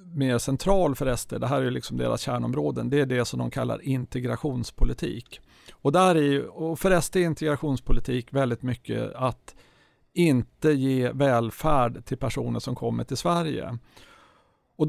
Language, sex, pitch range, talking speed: Swedish, male, 125-155 Hz, 135 wpm